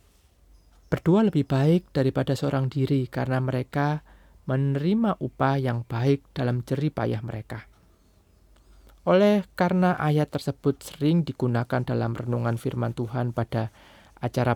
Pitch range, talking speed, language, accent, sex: 120-150 Hz, 115 wpm, Indonesian, native, male